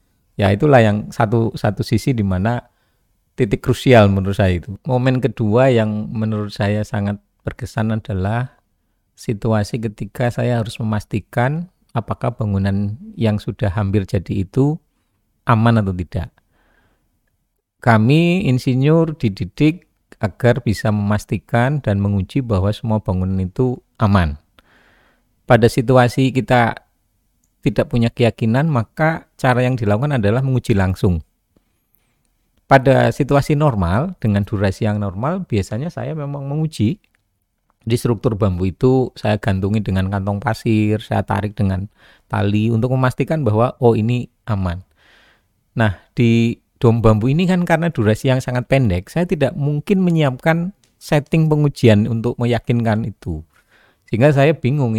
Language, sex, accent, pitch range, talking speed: Indonesian, male, native, 105-130 Hz, 125 wpm